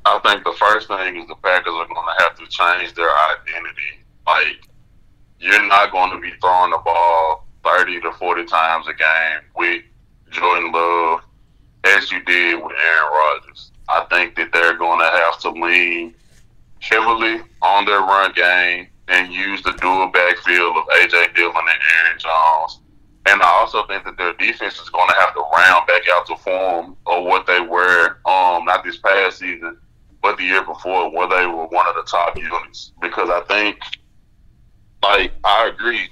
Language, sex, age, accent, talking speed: English, male, 20-39, American, 180 wpm